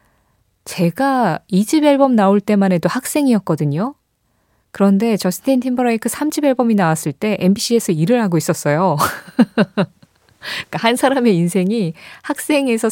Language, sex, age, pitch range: Korean, female, 20-39, 170-240 Hz